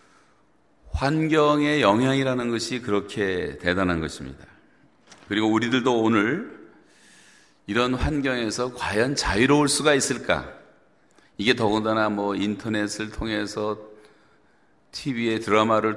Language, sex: Korean, male